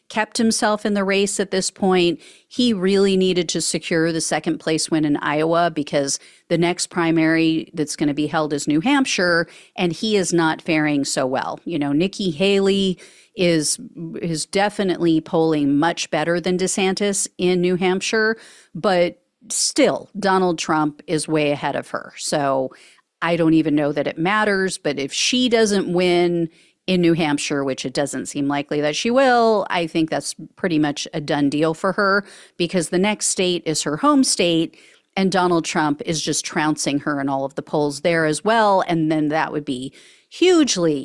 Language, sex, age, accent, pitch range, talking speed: English, female, 40-59, American, 155-195 Hz, 180 wpm